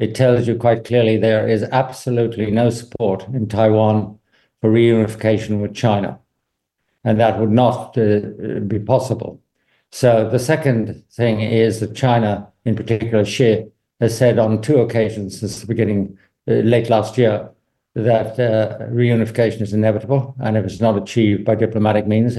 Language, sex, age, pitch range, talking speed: English, male, 50-69, 105-120 Hz, 155 wpm